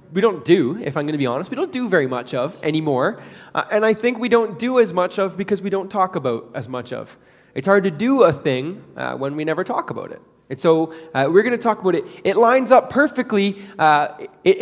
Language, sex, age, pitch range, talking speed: English, male, 20-39, 150-200 Hz, 255 wpm